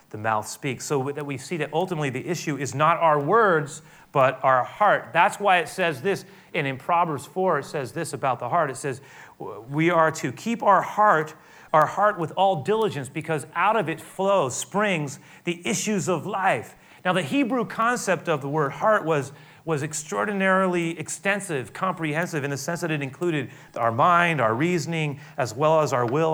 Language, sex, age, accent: English, male, 30-49, American